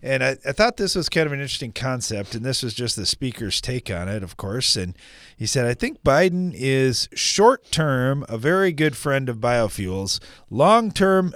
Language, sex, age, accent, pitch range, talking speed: English, male, 40-59, American, 95-130 Hz, 195 wpm